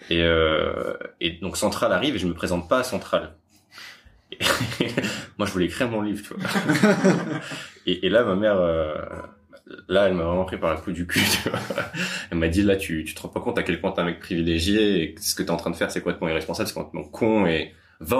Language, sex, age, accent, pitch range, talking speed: French, male, 20-39, French, 85-105 Hz, 245 wpm